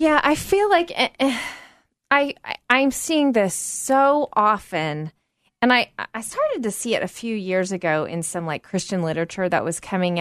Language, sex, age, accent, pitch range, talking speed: English, female, 20-39, American, 180-240 Hz, 175 wpm